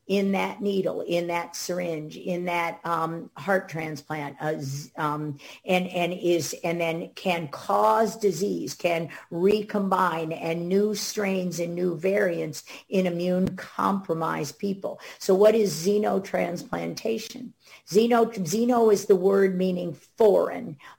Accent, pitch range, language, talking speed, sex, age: American, 170-200 Hz, English, 125 wpm, female, 50-69